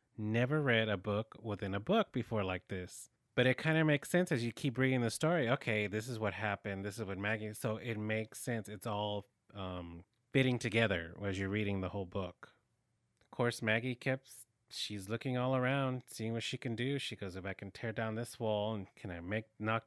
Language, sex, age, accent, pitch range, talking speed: English, male, 30-49, American, 100-120 Hz, 220 wpm